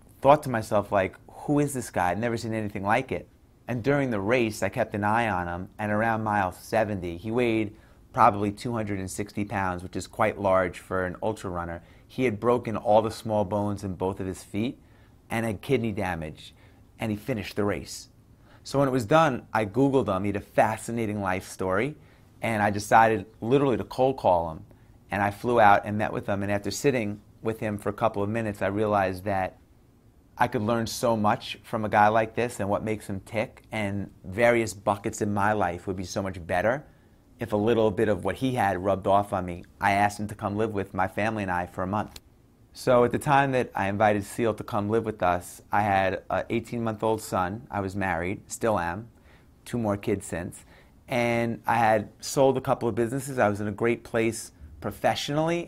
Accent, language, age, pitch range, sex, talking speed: American, English, 30-49, 100-115 Hz, male, 215 wpm